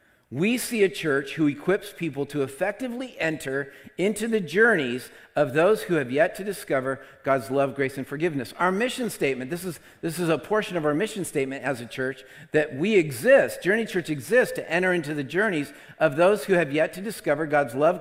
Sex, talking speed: male, 200 wpm